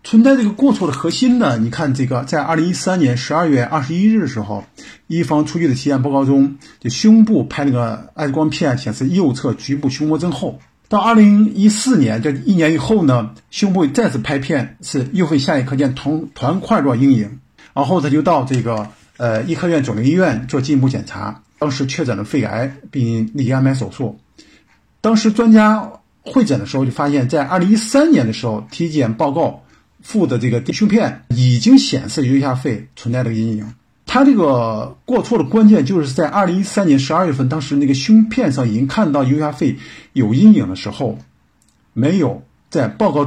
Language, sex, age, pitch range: Chinese, male, 50-69, 125-180 Hz